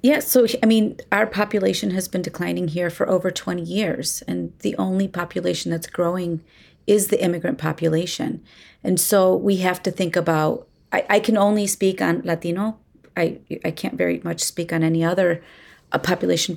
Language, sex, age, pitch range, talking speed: English, female, 30-49, 165-195 Hz, 180 wpm